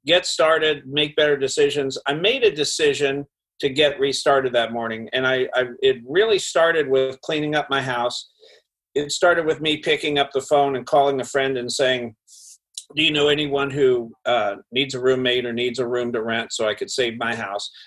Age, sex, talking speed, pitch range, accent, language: 50-69, male, 200 wpm, 130-175 Hz, American, English